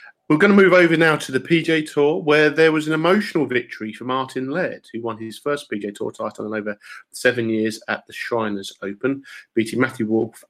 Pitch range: 105-130 Hz